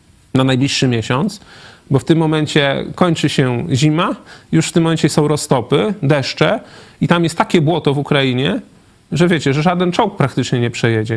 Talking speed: 170 wpm